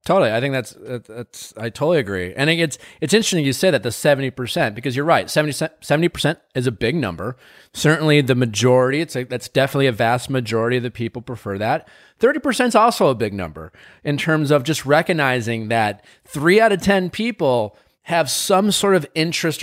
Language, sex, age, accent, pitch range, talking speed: English, male, 30-49, American, 115-155 Hz, 195 wpm